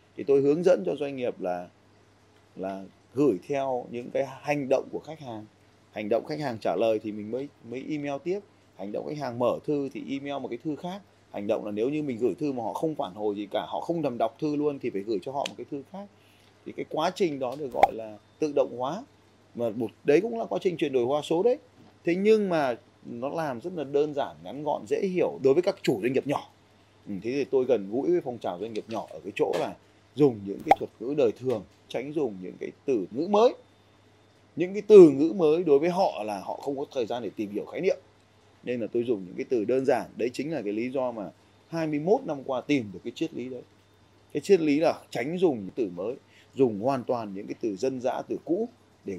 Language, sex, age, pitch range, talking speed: Vietnamese, male, 20-39, 110-155 Hz, 255 wpm